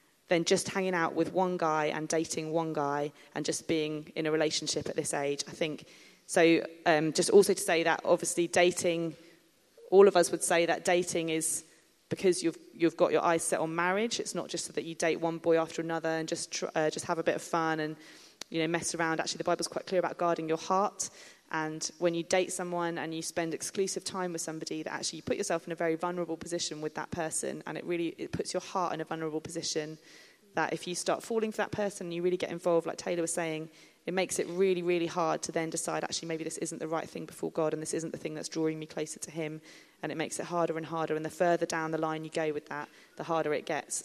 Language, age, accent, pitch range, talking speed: English, 20-39, British, 160-175 Hz, 250 wpm